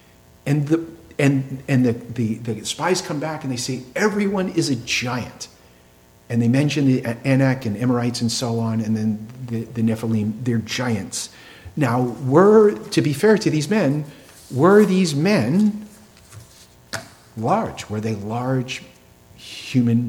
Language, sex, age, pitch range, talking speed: English, male, 50-69, 115-150 Hz, 150 wpm